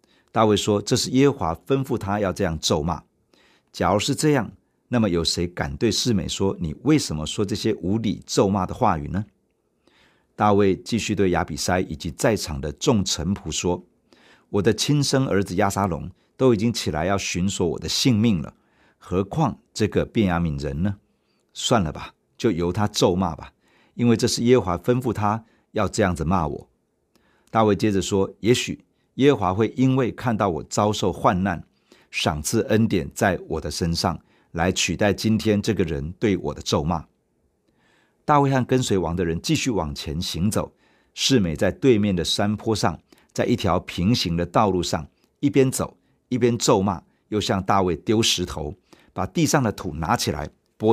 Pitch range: 90-120 Hz